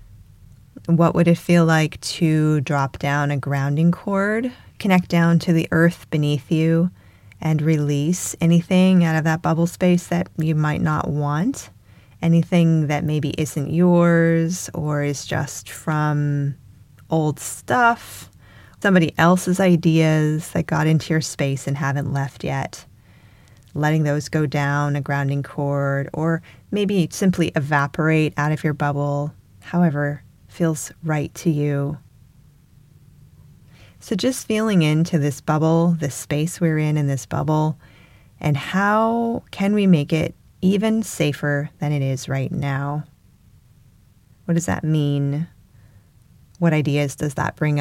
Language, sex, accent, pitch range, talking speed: English, female, American, 140-165 Hz, 135 wpm